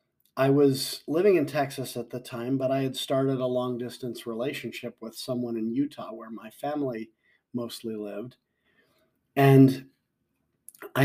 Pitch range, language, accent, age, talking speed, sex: 120-140 Hz, English, American, 50-69, 140 wpm, male